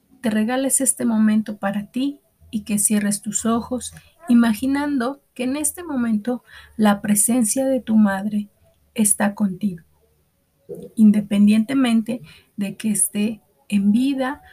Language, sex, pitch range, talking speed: Spanish, female, 195-235 Hz, 115 wpm